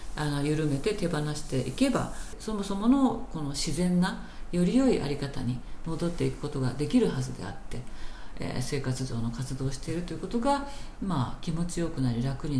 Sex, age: female, 50-69